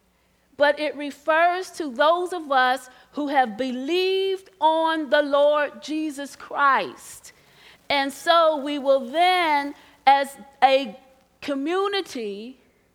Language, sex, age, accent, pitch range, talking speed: English, female, 40-59, American, 270-350 Hz, 105 wpm